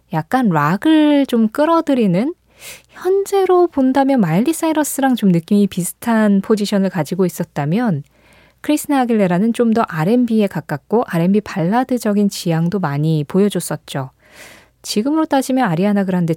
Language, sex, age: Korean, female, 20-39